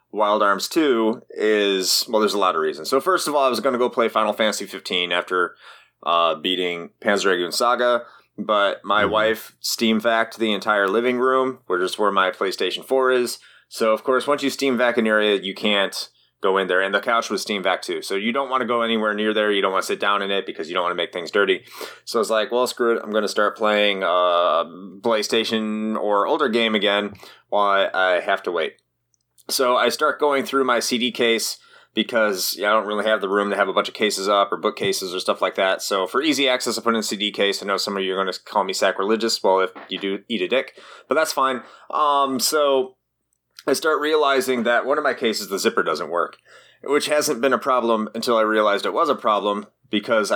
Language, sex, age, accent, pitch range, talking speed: English, male, 30-49, American, 105-130 Hz, 235 wpm